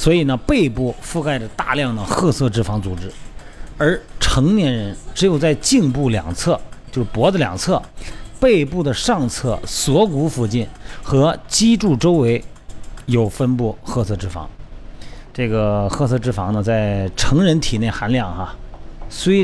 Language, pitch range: Chinese, 110-155 Hz